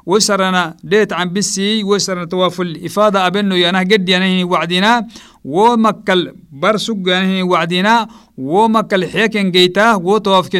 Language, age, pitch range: English, 50-69, 180-210 Hz